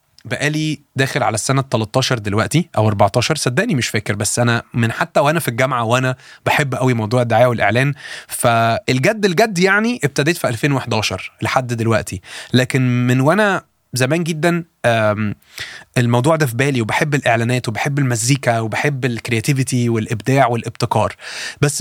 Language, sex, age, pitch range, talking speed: Arabic, male, 20-39, 120-170 Hz, 140 wpm